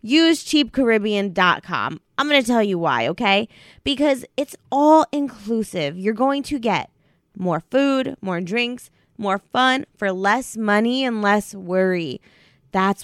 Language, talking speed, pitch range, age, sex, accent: English, 135 wpm, 195-270 Hz, 20-39, female, American